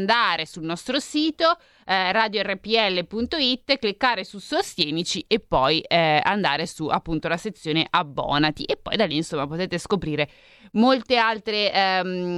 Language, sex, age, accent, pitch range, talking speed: Italian, female, 20-39, native, 165-225 Hz, 135 wpm